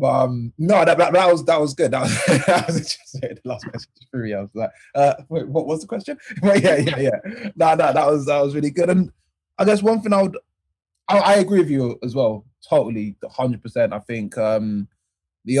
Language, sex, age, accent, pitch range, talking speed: English, male, 20-39, British, 105-135 Hz, 225 wpm